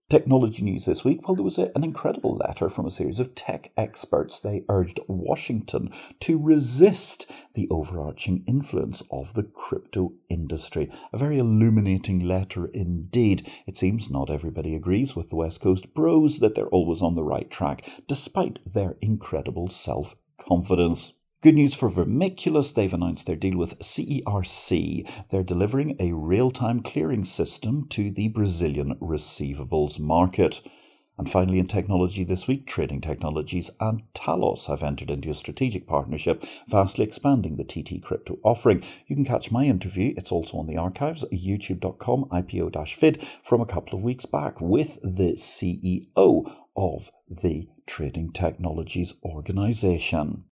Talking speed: 145 wpm